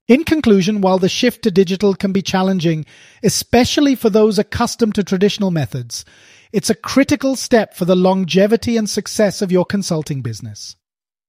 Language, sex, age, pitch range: English, male, 30-49, 160-220 Hz